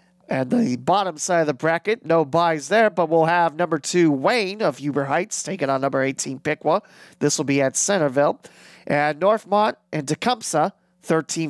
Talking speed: 175 wpm